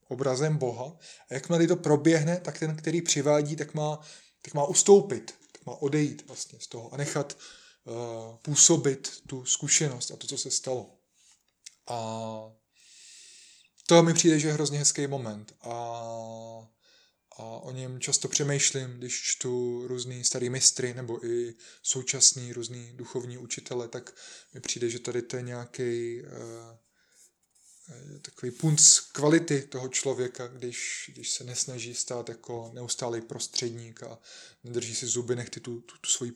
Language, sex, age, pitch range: Czech, male, 20-39, 120-150 Hz